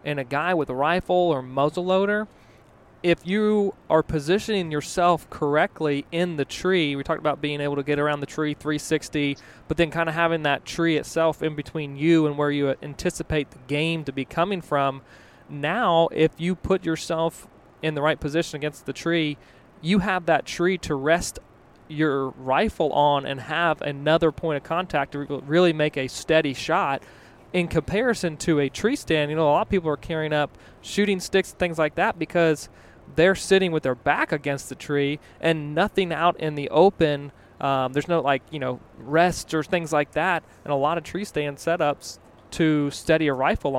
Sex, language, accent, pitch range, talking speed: male, English, American, 140-170 Hz, 195 wpm